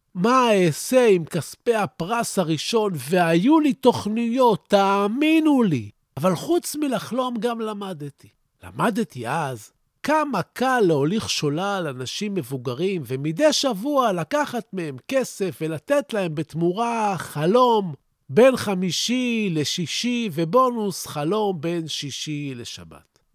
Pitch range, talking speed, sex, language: 145-230 Hz, 105 wpm, male, Hebrew